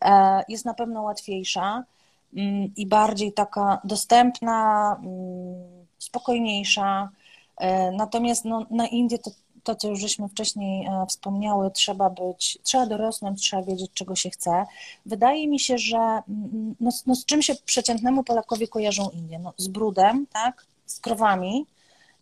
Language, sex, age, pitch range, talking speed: Polish, female, 30-49, 190-235 Hz, 130 wpm